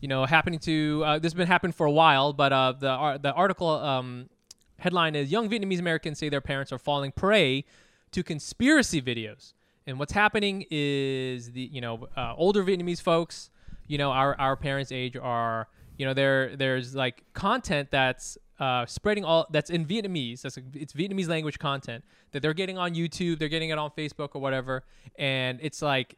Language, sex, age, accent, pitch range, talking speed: English, male, 20-39, American, 130-170 Hz, 195 wpm